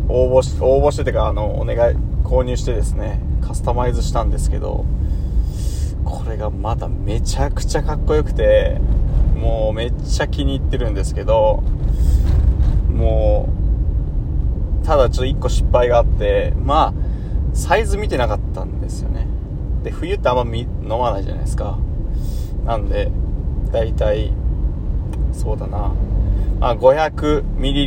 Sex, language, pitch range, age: male, Japanese, 75-115 Hz, 20-39